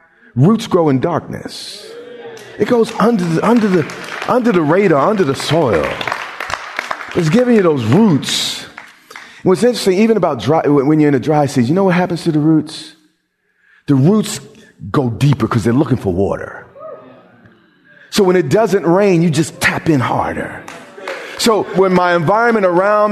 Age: 40-59